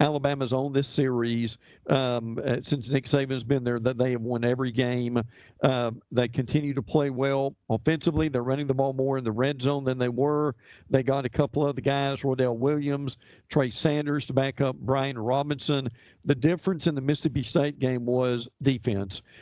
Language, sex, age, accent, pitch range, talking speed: English, male, 50-69, American, 130-160 Hz, 190 wpm